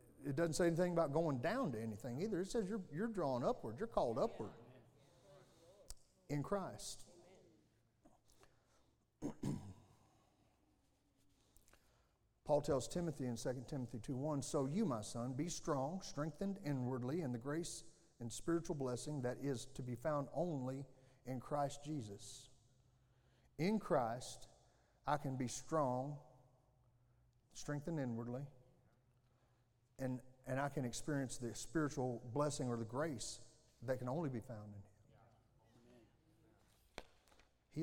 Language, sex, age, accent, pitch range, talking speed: English, male, 40-59, American, 120-150 Hz, 125 wpm